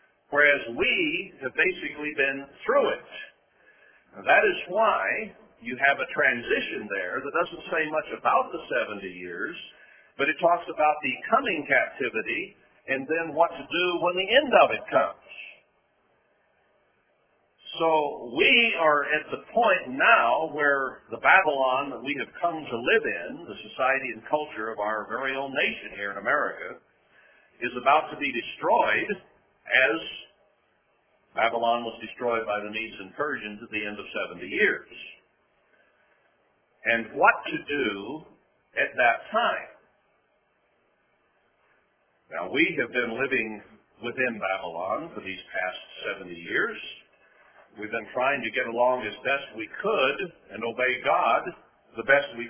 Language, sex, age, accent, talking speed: English, male, 50-69, American, 145 wpm